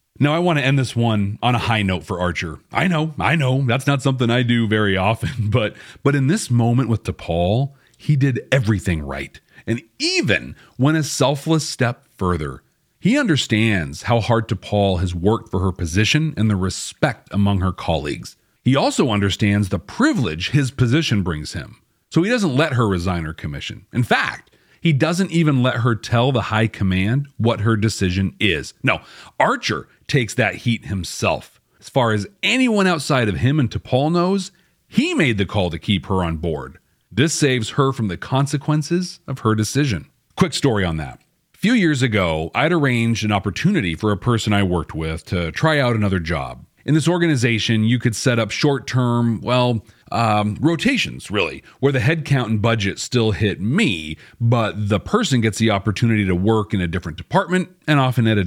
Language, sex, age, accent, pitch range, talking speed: English, male, 40-59, American, 100-140 Hz, 190 wpm